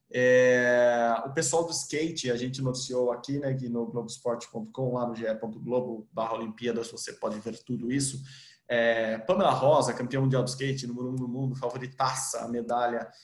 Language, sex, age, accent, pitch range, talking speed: Portuguese, male, 20-39, Brazilian, 120-140 Hz, 170 wpm